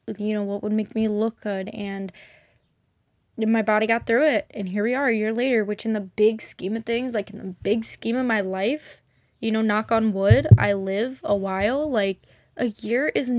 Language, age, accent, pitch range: English, 10-29, American, 200-235 Hz